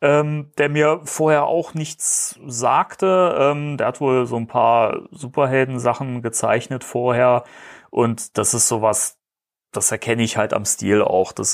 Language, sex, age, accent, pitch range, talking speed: German, male, 30-49, German, 120-150 Hz, 150 wpm